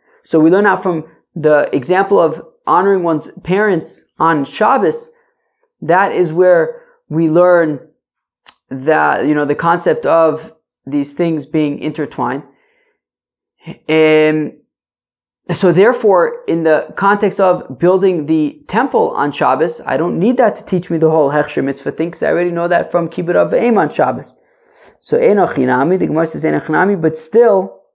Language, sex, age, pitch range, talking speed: English, male, 20-39, 155-200 Hz, 145 wpm